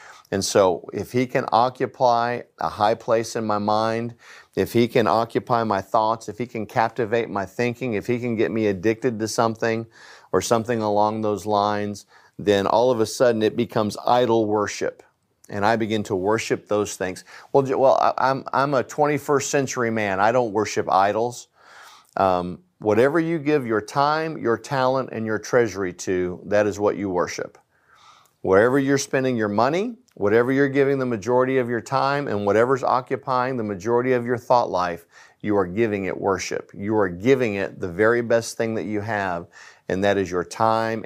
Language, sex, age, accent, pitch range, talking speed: English, male, 50-69, American, 105-125 Hz, 185 wpm